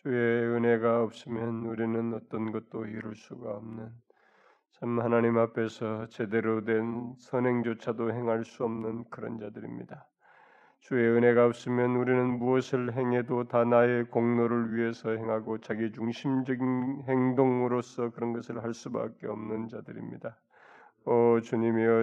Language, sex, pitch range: Korean, male, 115-130 Hz